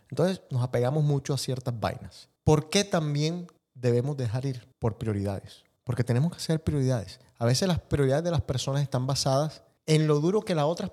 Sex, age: male, 30-49